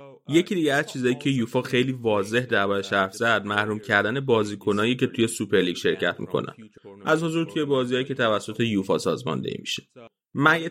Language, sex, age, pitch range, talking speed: Persian, male, 30-49, 110-140 Hz, 170 wpm